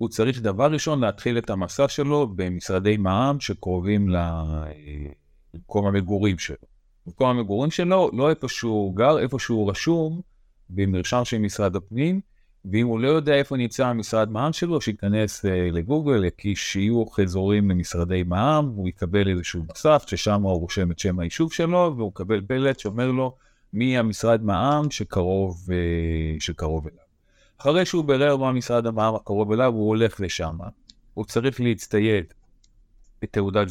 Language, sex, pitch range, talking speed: Hebrew, male, 90-120 Hz, 140 wpm